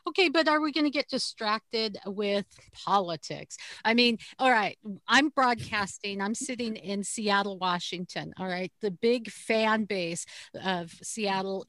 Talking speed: 150 wpm